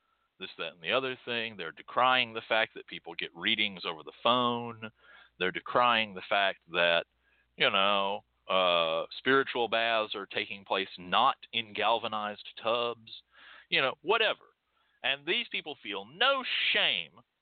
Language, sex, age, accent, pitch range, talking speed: English, male, 50-69, American, 115-175 Hz, 150 wpm